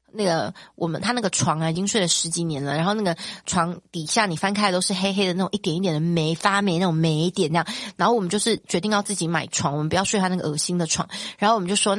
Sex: female